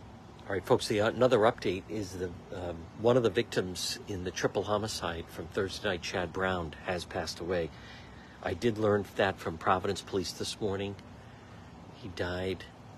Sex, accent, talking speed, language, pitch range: male, American, 170 wpm, English, 85-130 Hz